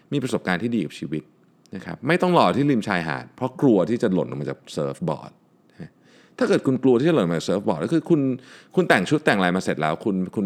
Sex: male